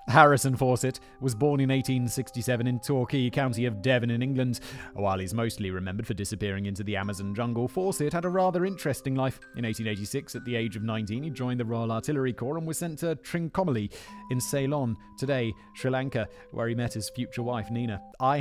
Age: 30-49